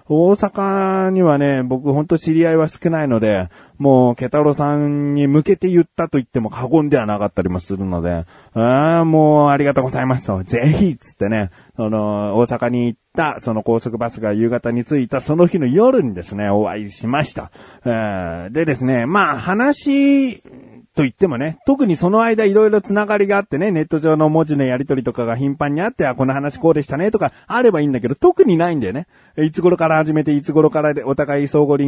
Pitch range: 120-165 Hz